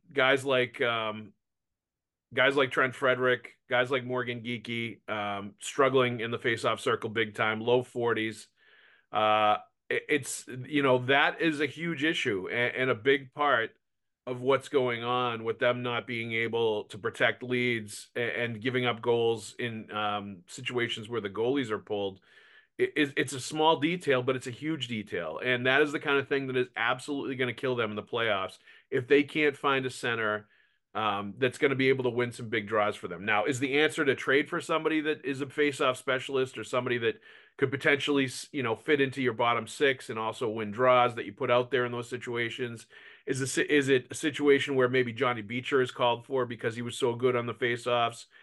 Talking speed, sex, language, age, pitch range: 205 wpm, male, English, 40-59, 115-140 Hz